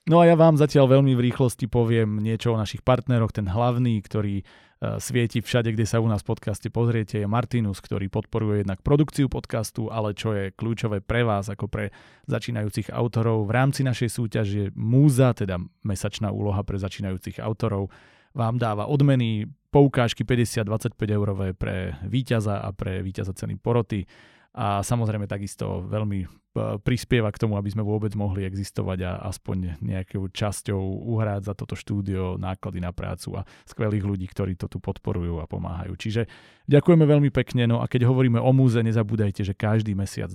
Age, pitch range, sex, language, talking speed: 30-49, 100-120 Hz, male, Slovak, 170 wpm